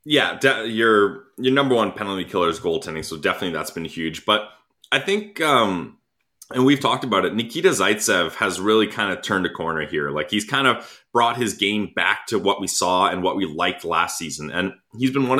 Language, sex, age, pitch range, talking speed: English, male, 20-39, 95-130 Hz, 220 wpm